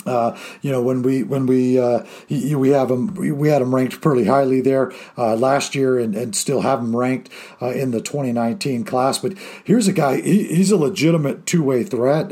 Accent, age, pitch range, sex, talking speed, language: American, 50-69, 130-160 Hz, male, 220 wpm, English